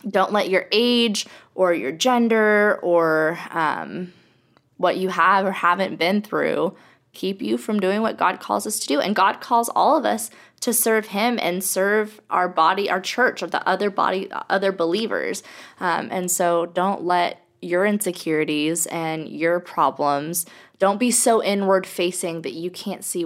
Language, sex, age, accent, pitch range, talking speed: English, female, 20-39, American, 170-200 Hz, 170 wpm